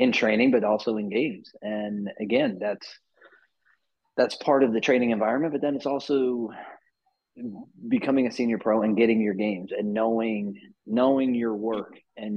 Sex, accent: male, American